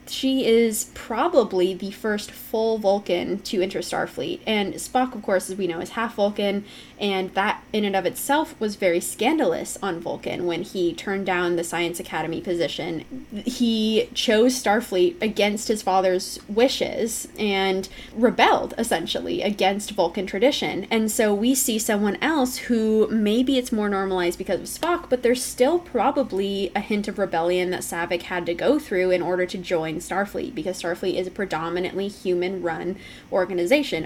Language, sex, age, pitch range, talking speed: English, female, 20-39, 190-235 Hz, 160 wpm